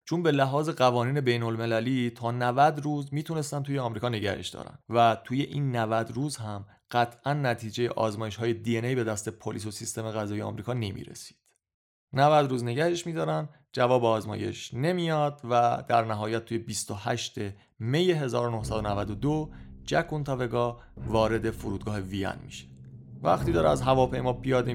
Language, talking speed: Persian, 145 wpm